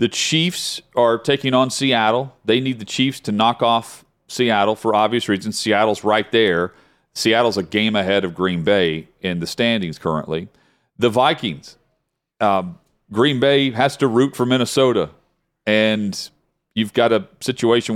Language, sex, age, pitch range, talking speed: English, male, 40-59, 95-120 Hz, 155 wpm